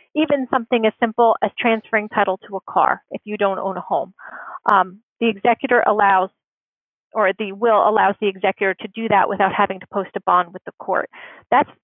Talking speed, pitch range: 200 wpm, 205-235 Hz